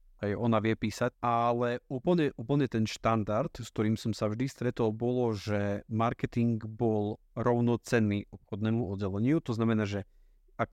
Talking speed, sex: 145 wpm, male